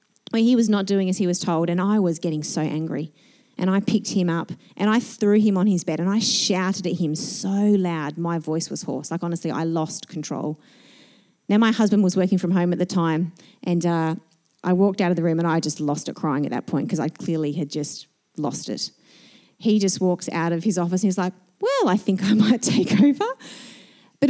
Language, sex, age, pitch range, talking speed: English, female, 30-49, 180-235 Hz, 235 wpm